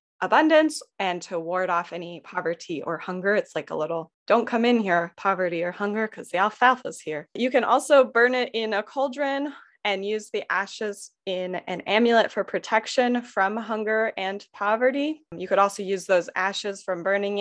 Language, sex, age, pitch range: English, female, 20-39, 180-230 Hz